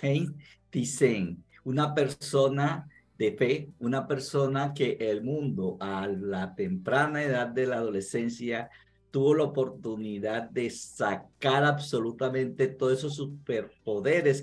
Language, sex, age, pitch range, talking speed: Spanish, male, 50-69, 125-155 Hz, 110 wpm